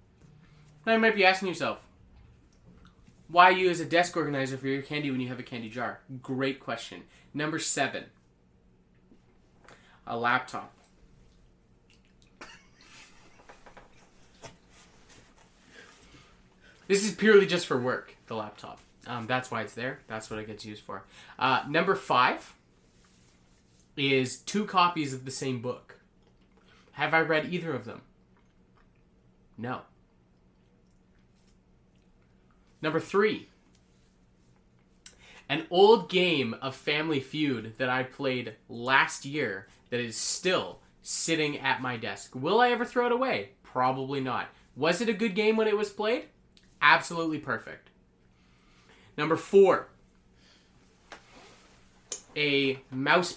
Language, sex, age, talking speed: English, male, 20-39, 120 wpm